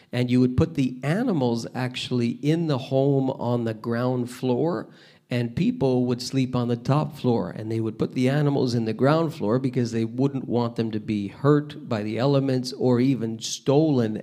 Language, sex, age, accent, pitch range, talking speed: English, male, 50-69, American, 120-150 Hz, 195 wpm